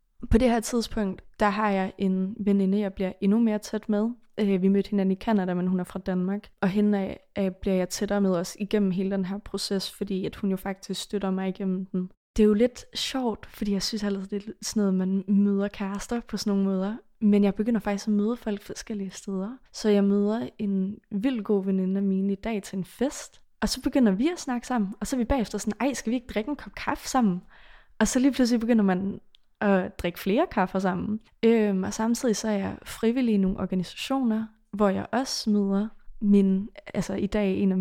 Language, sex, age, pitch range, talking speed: Danish, female, 20-39, 195-220 Hz, 220 wpm